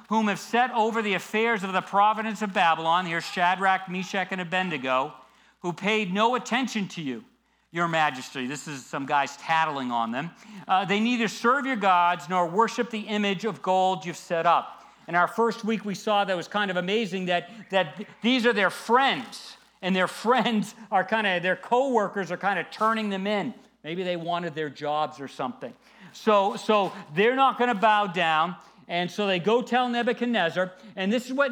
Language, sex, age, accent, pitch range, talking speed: English, male, 50-69, American, 170-230 Hz, 195 wpm